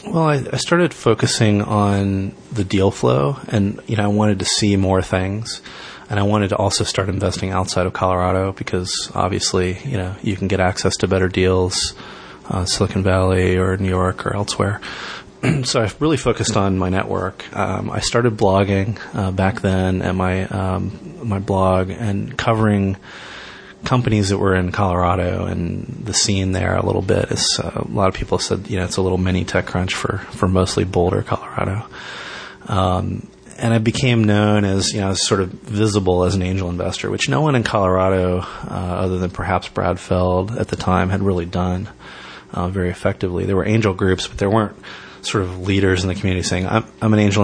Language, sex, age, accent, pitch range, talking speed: English, male, 30-49, American, 90-105 Hz, 195 wpm